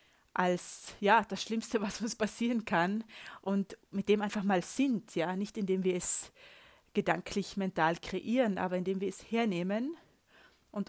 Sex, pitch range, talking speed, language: female, 180-210 Hz, 155 wpm, German